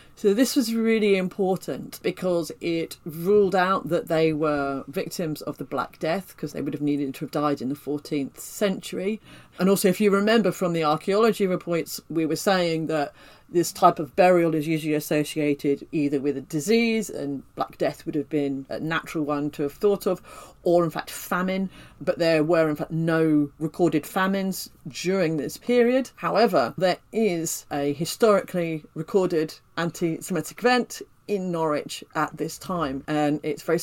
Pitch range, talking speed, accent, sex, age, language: 155-190 Hz, 170 wpm, British, female, 40-59, English